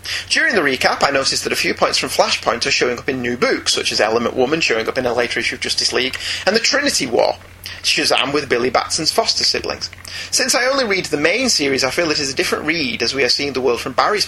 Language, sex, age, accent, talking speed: English, male, 30-49, British, 260 wpm